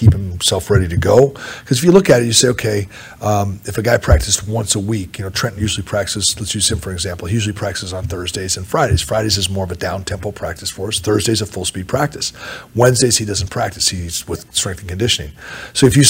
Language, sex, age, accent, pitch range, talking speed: English, male, 40-59, American, 95-120 Hz, 245 wpm